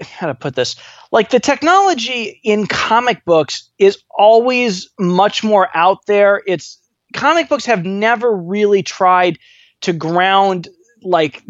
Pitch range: 175-225 Hz